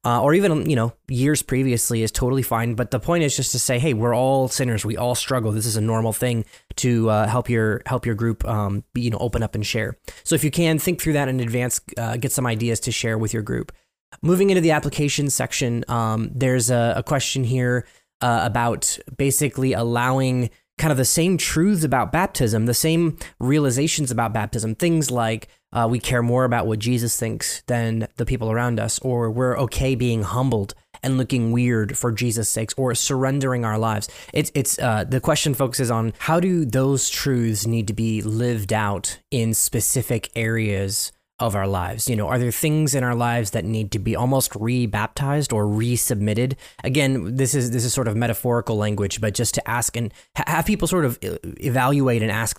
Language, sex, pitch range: English, male, 115-135 Hz